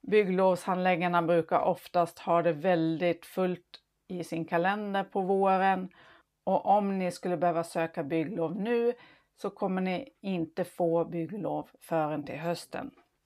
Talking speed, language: 130 wpm, Swedish